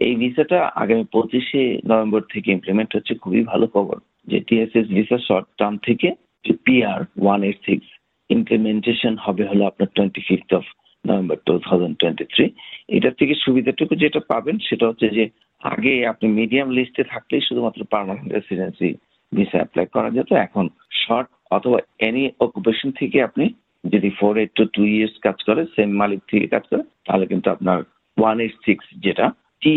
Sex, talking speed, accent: male, 70 wpm, native